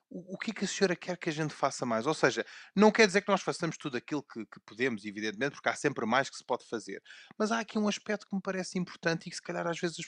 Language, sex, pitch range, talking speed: Portuguese, male, 115-175 Hz, 300 wpm